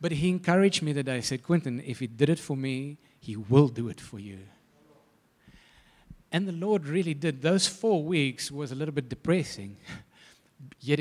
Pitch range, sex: 120-150 Hz, male